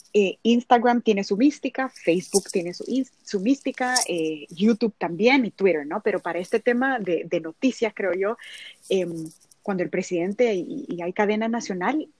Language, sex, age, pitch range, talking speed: Spanish, female, 20-39, 195-245 Hz, 160 wpm